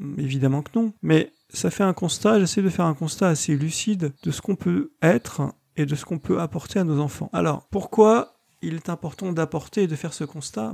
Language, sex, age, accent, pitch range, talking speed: French, male, 40-59, French, 145-185 Hz, 225 wpm